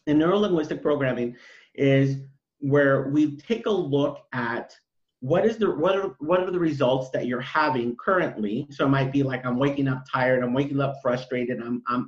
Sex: male